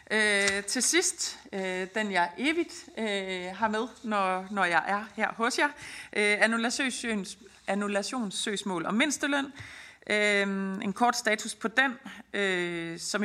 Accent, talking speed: native, 105 wpm